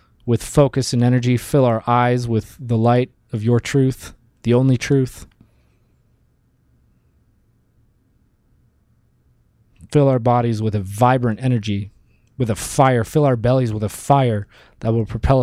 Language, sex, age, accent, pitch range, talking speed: English, male, 20-39, American, 110-125 Hz, 135 wpm